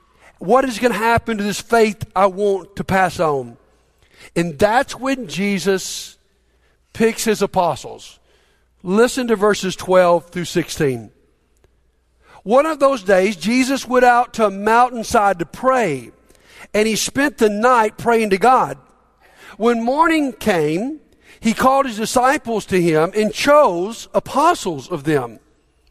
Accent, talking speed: American, 140 wpm